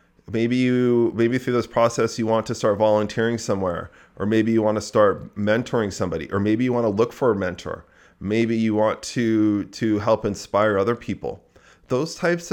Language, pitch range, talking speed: English, 100-120 Hz, 190 wpm